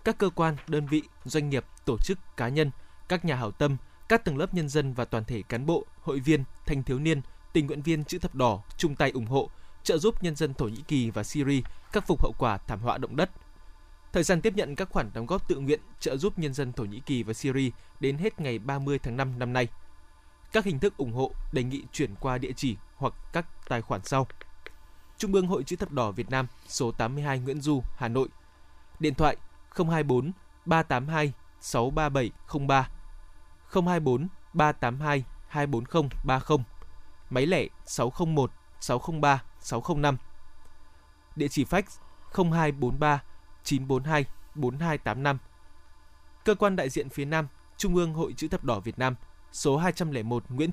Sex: male